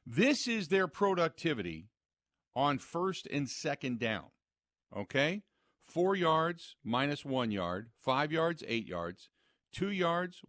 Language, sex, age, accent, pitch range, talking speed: English, male, 50-69, American, 115-165 Hz, 120 wpm